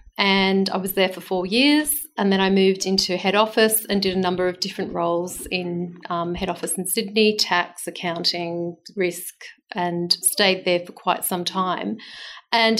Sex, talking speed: female, 180 wpm